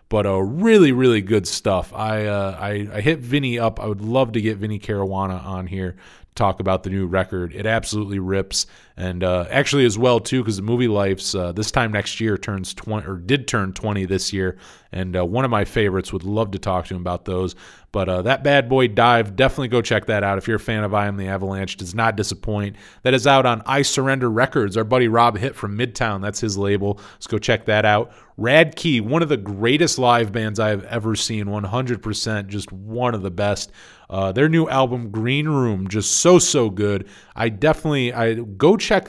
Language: English